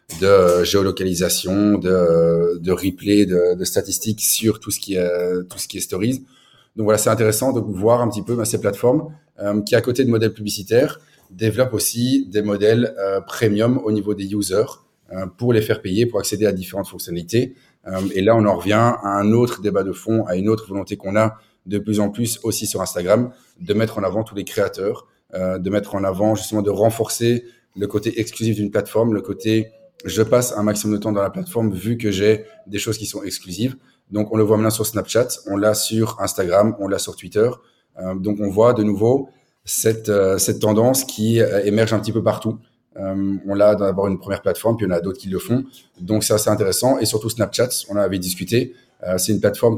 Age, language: 30-49, French